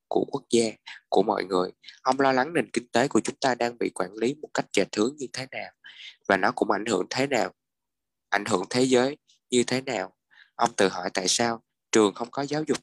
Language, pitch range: Vietnamese, 105-130 Hz